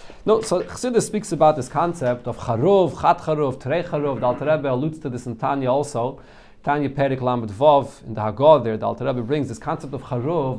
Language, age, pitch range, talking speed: English, 40-59, 130-170 Hz, 195 wpm